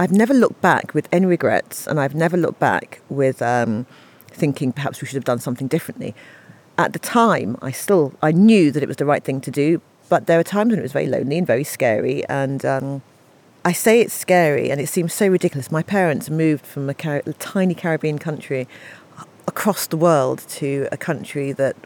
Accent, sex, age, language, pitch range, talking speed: British, female, 40-59, English, 140-180 Hz, 210 wpm